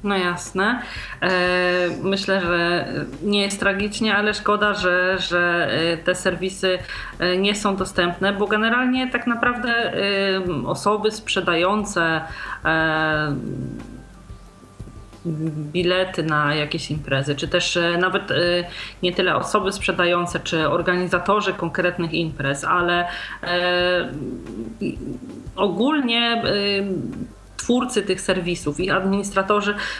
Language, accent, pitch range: Polish, native, 180-215 Hz